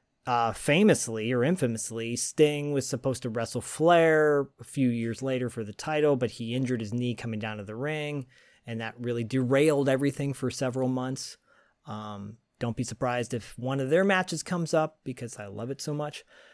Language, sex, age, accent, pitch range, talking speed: English, male, 30-49, American, 120-150 Hz, 190 wpm